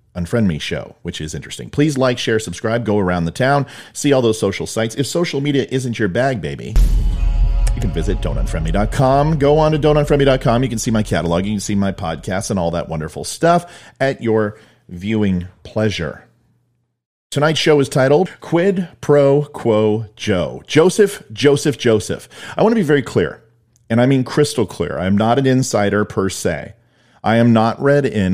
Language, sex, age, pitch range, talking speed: English, male, 40-59, 95-135 Hz, 180 wpm